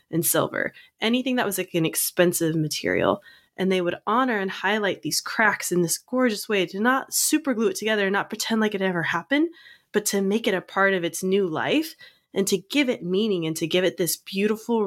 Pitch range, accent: 170-215 Hz, American